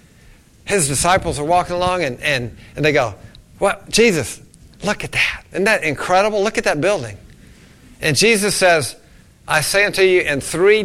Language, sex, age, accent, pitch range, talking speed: English, male, 50-69, American, 140-190 Hz, 175 wpm